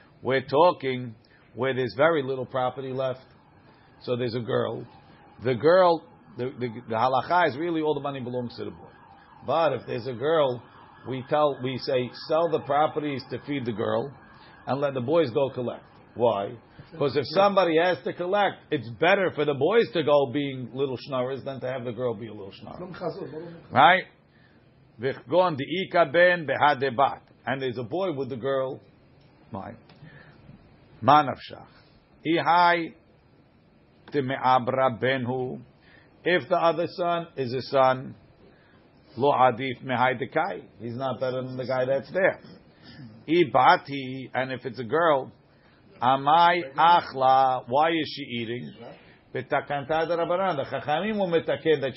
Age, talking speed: 50-69, 130 wpm